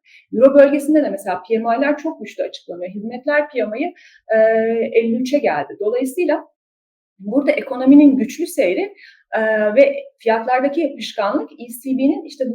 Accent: native